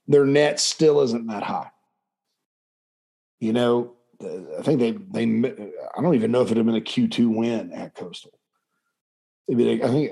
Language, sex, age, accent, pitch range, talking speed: English, male, 40-59, American, 115-145 Hz, 160 wpm